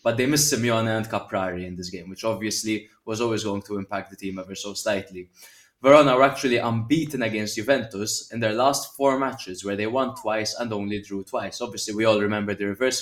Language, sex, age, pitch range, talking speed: English, male, 20-39, 100-120 Hz, 210 wpm